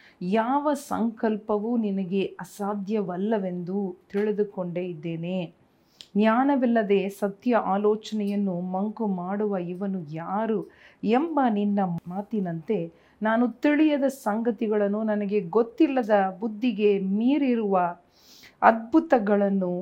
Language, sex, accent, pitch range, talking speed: Kannada, female, native, 185-220 Hz, 70 wpm